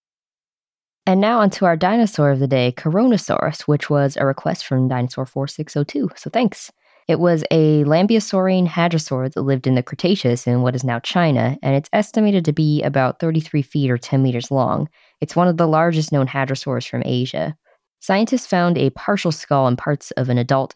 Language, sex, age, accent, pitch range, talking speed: English, female, 20-39, American, 135-170 Hz, 185 wpm